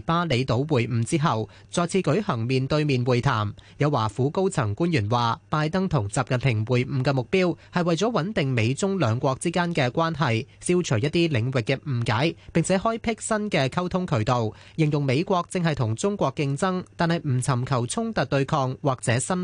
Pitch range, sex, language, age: 120-165 Hz, male, Chinese, 20-39